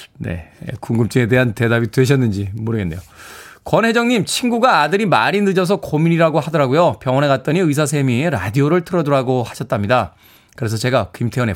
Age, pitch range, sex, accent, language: 20-39, 120-170 Hz, male, native, Korean